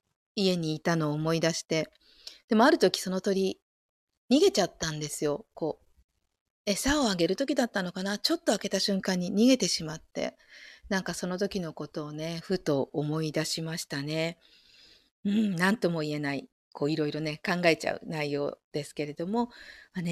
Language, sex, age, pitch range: Japanese, female, 40-59, 160-200 Hz